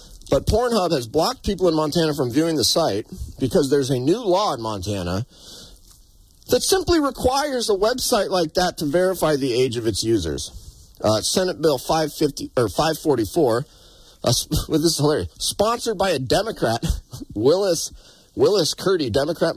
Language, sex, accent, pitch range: English, male, American, 105-160 Hz